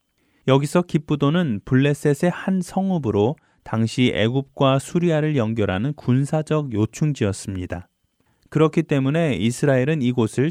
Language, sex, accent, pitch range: Korean, male, native, 105-150 Hz